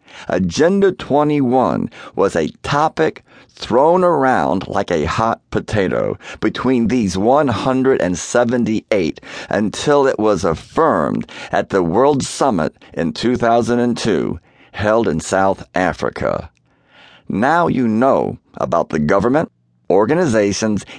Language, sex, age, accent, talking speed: English, male, 50-69, American, 100 wpm